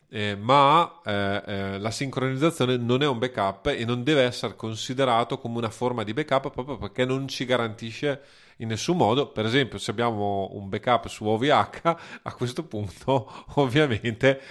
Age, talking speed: 30-49, 165 wpm